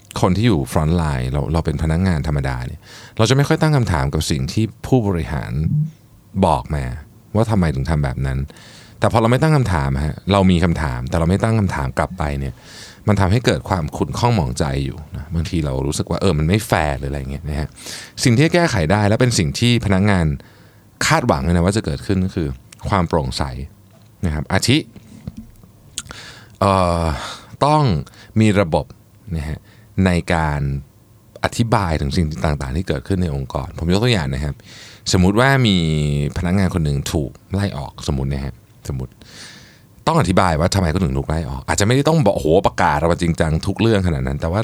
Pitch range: 75-105 Hz